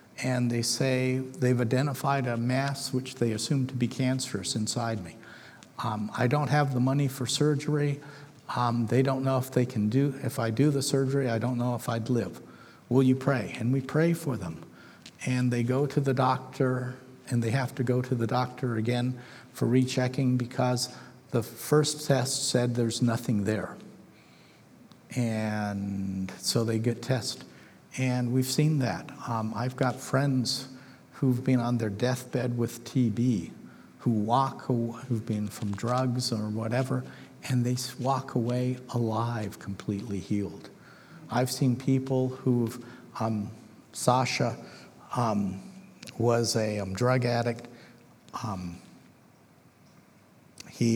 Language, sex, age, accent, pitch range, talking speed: English, male, 50-69, American, 115-130 Hz, 145 wpm